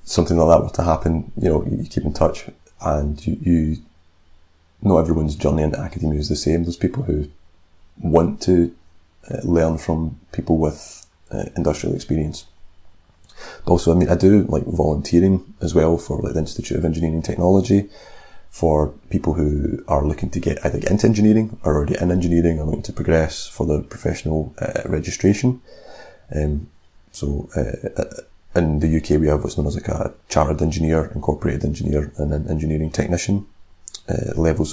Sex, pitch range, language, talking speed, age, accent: male, 75-85 Hz, English, 175 wpm, 30-49, British